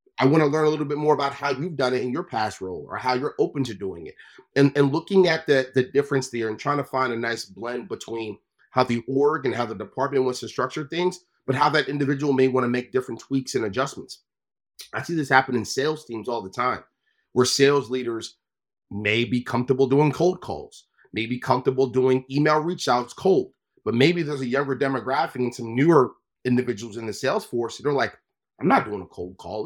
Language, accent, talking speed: English, American, 230 wpm